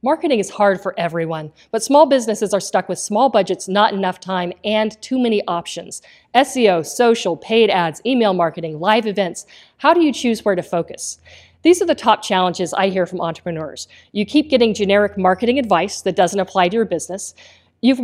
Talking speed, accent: 190 wpm, American